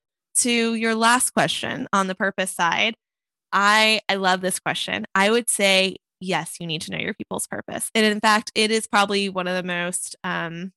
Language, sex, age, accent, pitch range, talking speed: English, female, 20-39, American, 180-215 Hz, 195 wpm